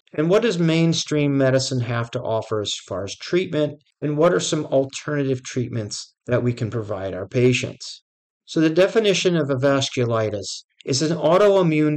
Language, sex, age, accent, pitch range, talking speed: English, male, 50-69, American, 115-150 Hz, 165 wpm